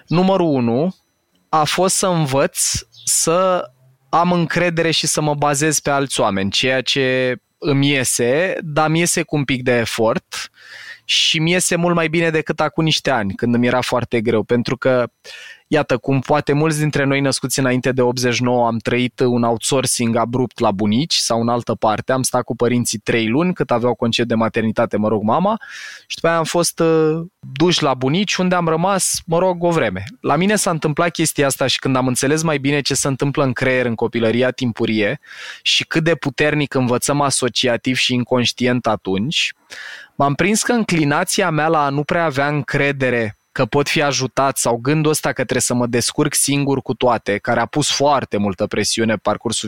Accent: native